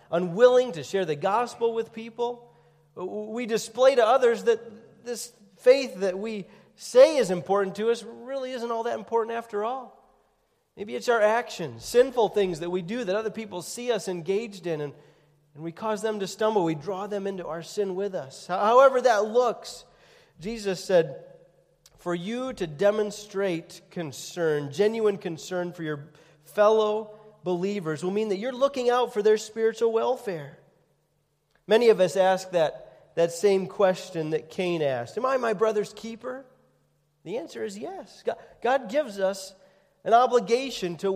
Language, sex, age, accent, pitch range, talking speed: English, male, 40-59, American, 155-225 Hz, 160 wpm